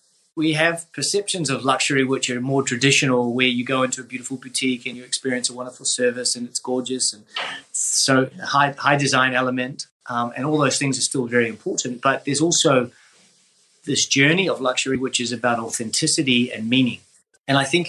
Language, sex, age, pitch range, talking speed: English, male, 30-49, 120-140 Hz, 190 wpm